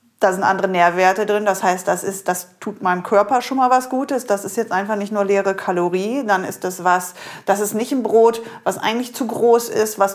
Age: 30-49